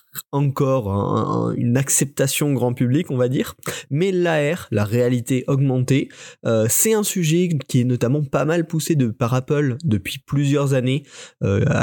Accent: French